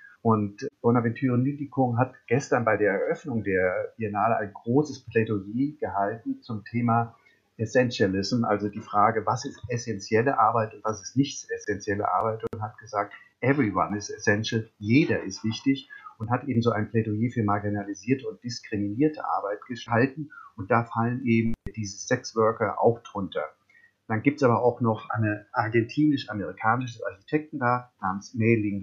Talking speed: 150 wpm